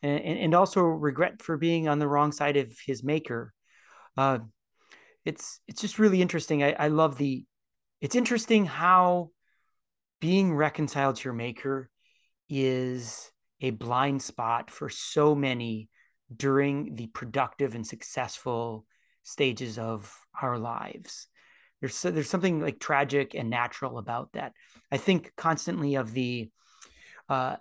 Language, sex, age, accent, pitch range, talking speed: English, male, 30-49, American, 135-175 Hz, 135 wpm